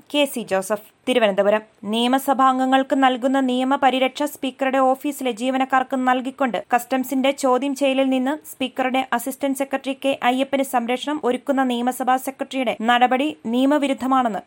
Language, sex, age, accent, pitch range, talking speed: Malayalam, female, 20-39, native, 230-270 Hz, 110 wpm